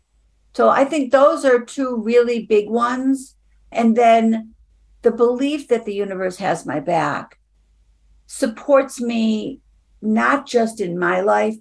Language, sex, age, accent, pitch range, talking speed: English, female, 50-69, American, 190-240 Hz, 135 wpm